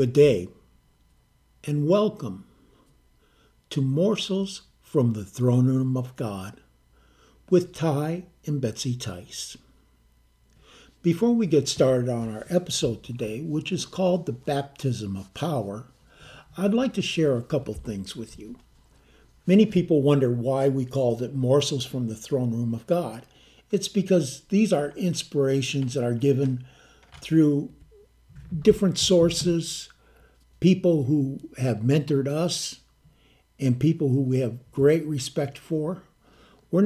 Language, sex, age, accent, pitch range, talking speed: English, male, 60-79, American, 125-170 Hz, 130 wpm